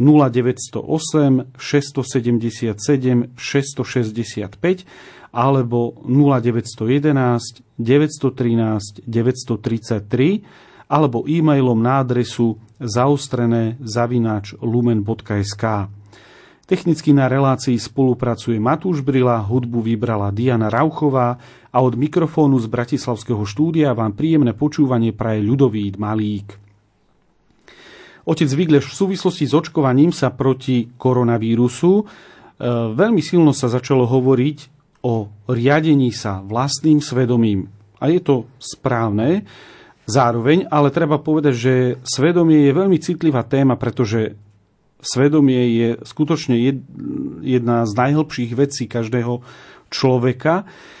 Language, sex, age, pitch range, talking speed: Slovak, male, 40-59, 115-145 Hz, 90 wpm